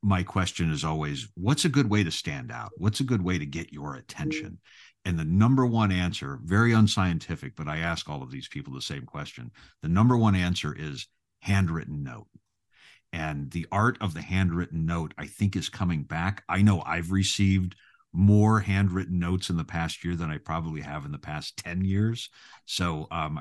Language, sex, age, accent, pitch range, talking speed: English, male, 50-69, American, 80-100 Hz, 195 wpm